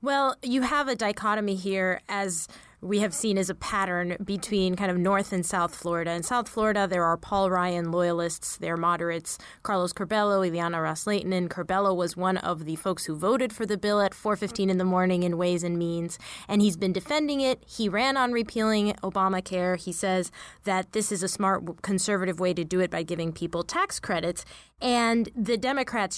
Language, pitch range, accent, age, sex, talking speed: English, 180-215 Hz, American, 20-39, female, 195 wpm